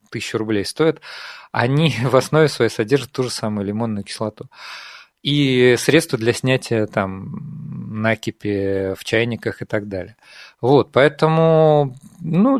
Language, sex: Russian, male